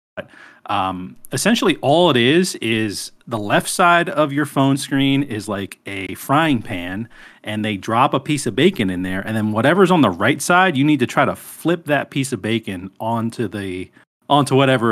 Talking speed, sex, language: 195 wpm, male, English